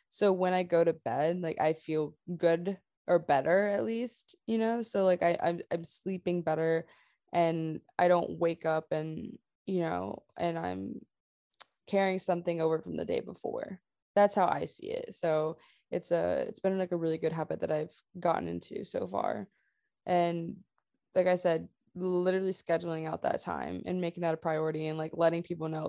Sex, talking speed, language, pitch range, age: female, 185 wpm, English, 160-185 Hz, 20-39